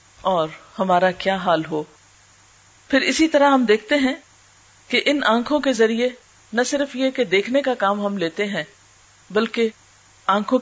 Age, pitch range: 40-59, 150-225 Hz